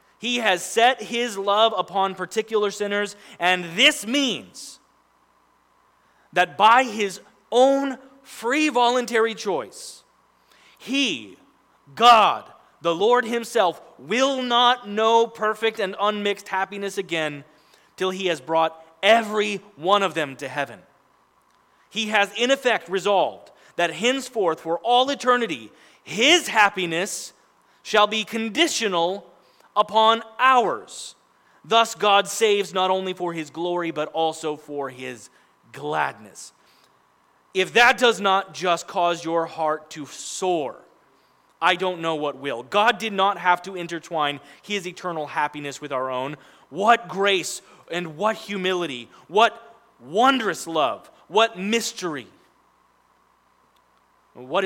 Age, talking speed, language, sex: 30-49, 120 wpm, English, male